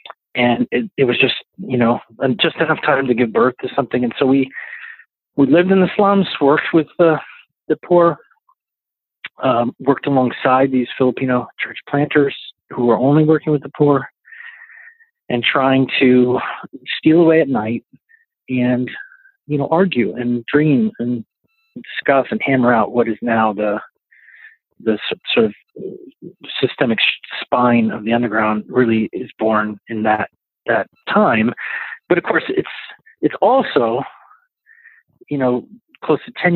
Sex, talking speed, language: male, 150 wpm, English